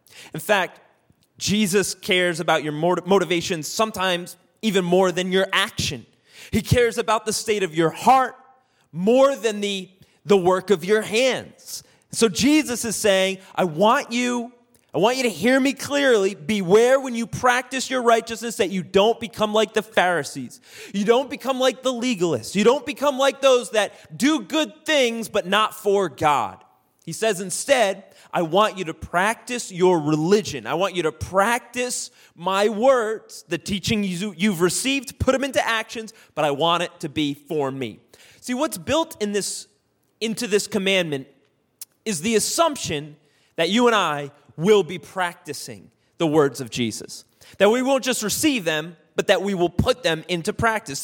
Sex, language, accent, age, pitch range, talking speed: male, English, American, 30-49, 175-240 Hz, 170 wpm